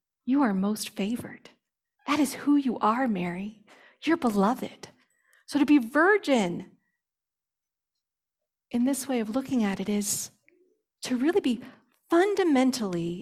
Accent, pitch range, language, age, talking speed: American, 210-285 Hz, English, 40-59, 125 wpm